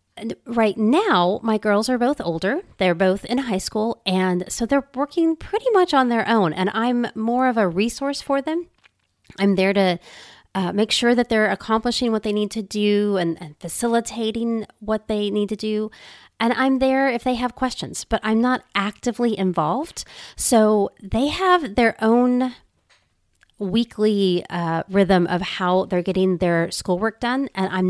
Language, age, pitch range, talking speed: English, 30-49, 190-245 Hz, 170 wpm